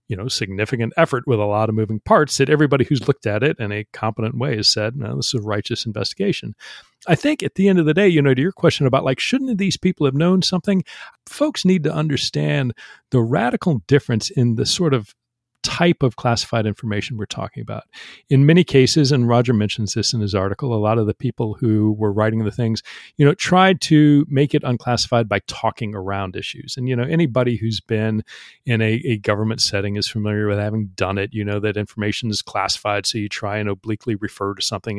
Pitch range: 110-145 Hz